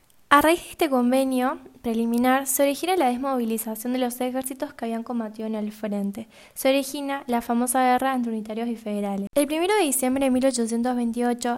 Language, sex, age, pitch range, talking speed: Spanish, female, 10-29, 230-265 Hz, 175 wpm